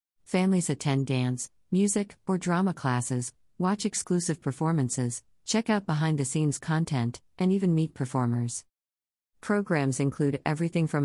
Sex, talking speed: female, 130 wpm